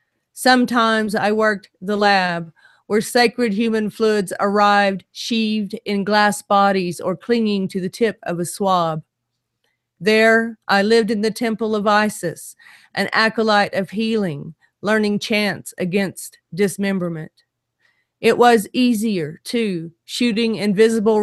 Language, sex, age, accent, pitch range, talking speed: English, female, 40-59, American, 195-215 Hz, 125 wpm